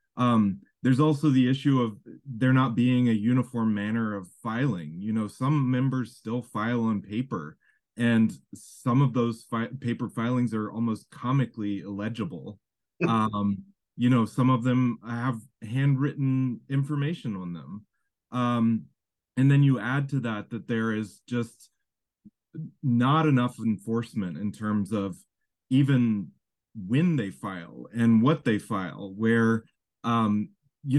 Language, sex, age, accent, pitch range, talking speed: English, male, 20-39, American, 110-130 Hz, 140 wpm